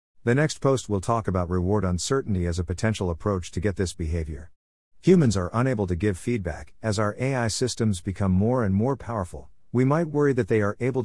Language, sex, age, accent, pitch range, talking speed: English, male, 50-69, American, 90-115 Hz, 205 wpm